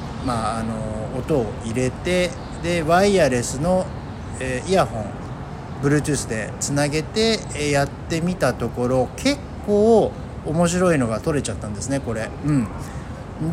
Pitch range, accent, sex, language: 115-160 Hz, native, male, Japanese